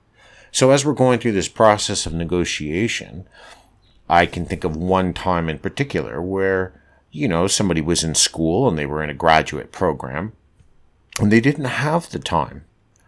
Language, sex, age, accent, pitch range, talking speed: English, male, 50-69, American, 80-105 Hz, 170 wpm